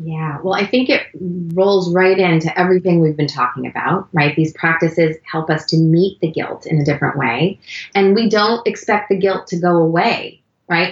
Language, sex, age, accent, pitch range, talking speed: English, female, 30-49, American, 155-190 Hz, 200 wpm